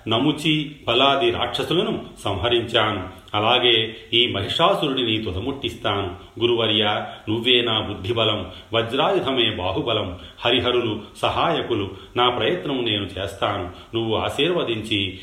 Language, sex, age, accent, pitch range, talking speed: Telugu, male, 40-59, native, 100-125 Hz, 85 wpm